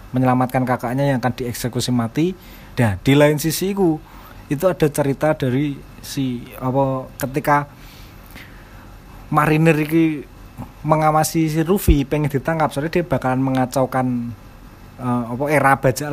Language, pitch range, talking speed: Indonesian, 120-155 Hz, 120 wpm